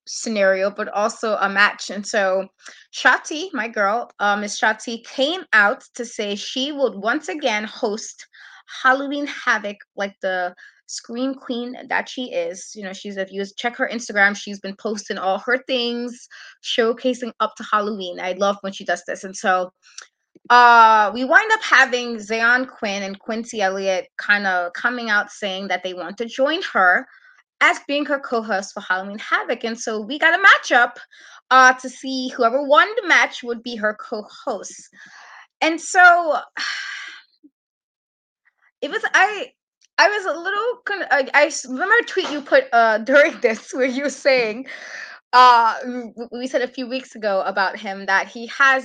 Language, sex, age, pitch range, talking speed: English, female, 20-39, 205-275 Hz, 170 wpm